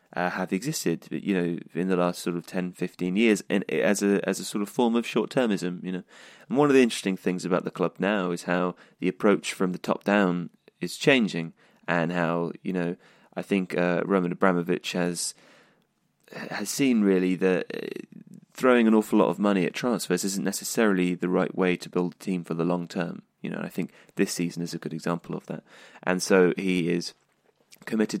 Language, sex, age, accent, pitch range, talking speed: English, male, 20-39, British, 85-100 Hz, 210 wpm